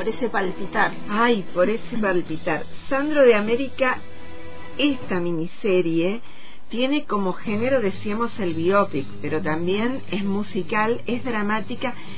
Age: 40-59